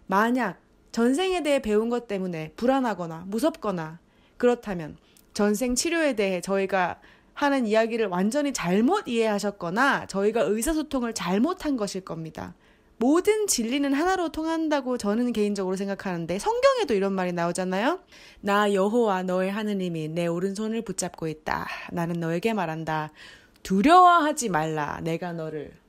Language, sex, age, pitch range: Korean, female, 20-39, 175-245 Hz